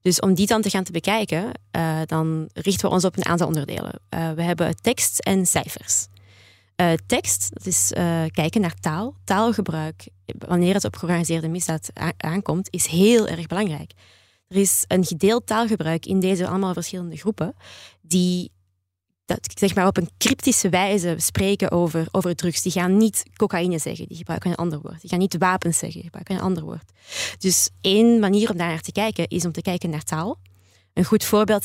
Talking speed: 190 wpm